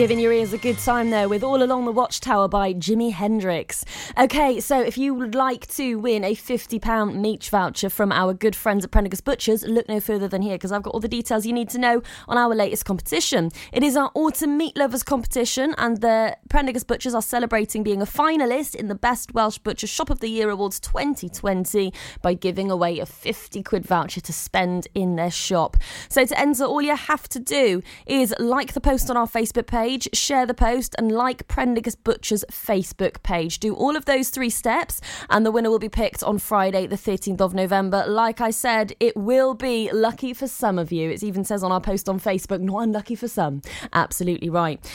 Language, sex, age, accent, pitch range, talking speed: English, female, 20-39, British, 195-250 Hz, 215 wpm